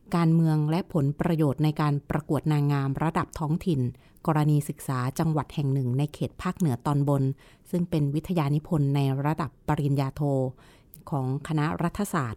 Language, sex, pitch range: Thai, female, 140-170 Hz